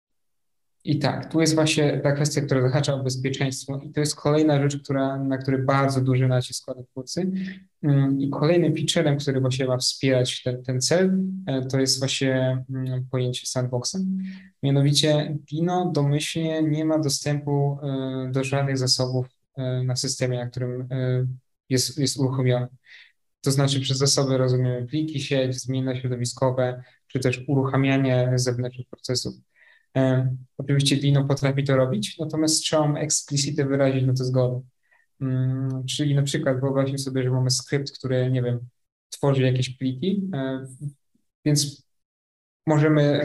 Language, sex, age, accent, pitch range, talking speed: Polish, male, 20-39, native, 130-150 Hz, 145 wpm